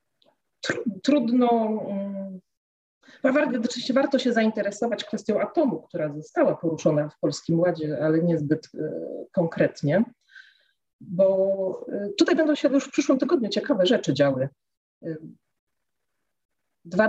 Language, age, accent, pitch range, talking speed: Polish, 40-59, native, 165-225 Hz, 100 wpm